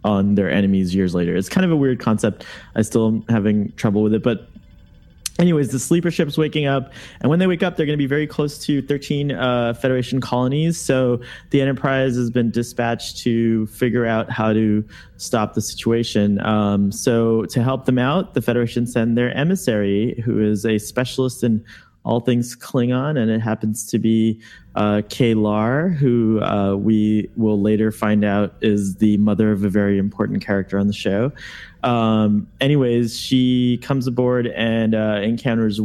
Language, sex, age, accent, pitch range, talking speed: English, male, 20-39, American, 105-130 Hz, 180 wpm